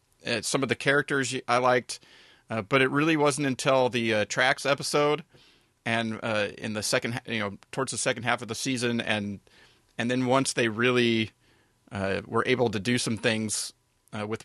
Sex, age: male, 30-49